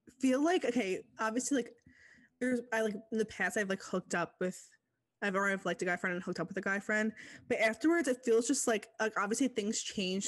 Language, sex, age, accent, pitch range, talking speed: English, female, 20-39, American, 185-235 Hz, 230 wpm